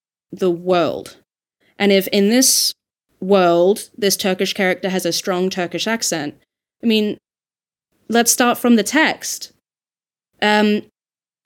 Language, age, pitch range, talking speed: English, 20-39, 180-235 Hz, 120 wpm